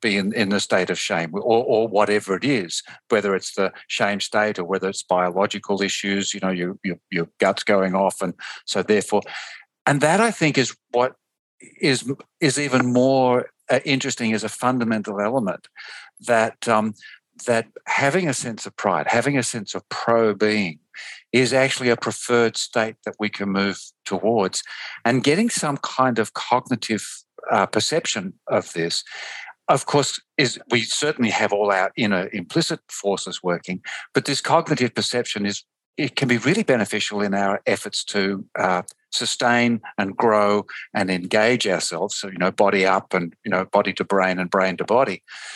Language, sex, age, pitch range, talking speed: English, male, 50-69, 100-125 Hz, 175 wpm